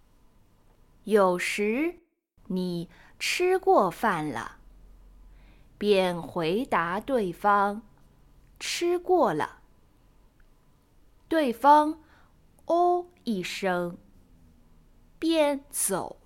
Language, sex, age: Chinese, female, 10-29